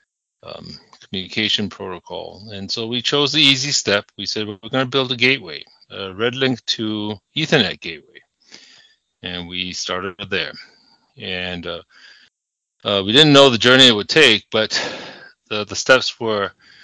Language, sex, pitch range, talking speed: English, male, 100-125 Hz, 155 wpm